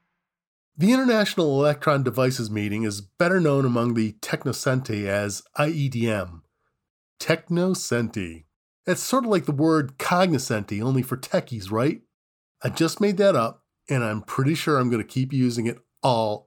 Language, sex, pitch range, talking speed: English, male, 110-155 Hz, 150 wpm